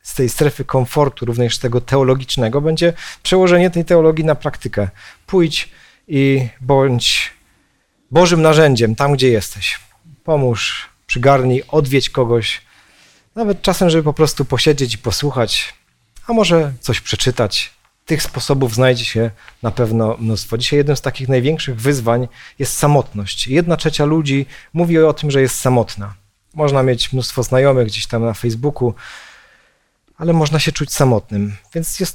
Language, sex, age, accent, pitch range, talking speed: Polish, male, 40-59, native, 120-150 Hz, 140 wpm